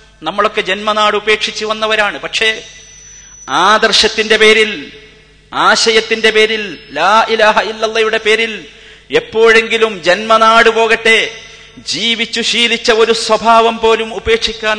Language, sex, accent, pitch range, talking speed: Malayalam, male, native, 195-245 Hz, 90 wpm